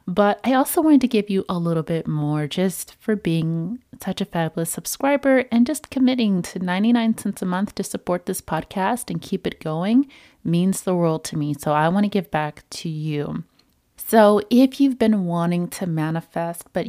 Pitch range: 160-220 Hz